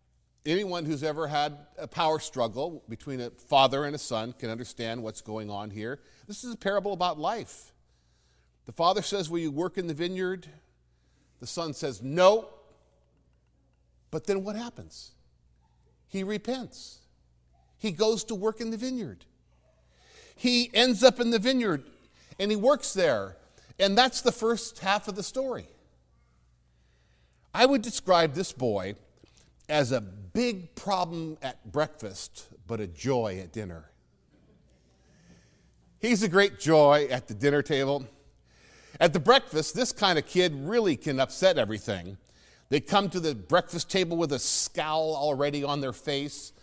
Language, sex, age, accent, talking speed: English, male, 50-69, American, 150 wpm